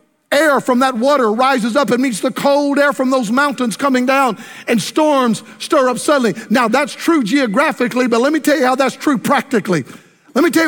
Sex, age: male, 50-69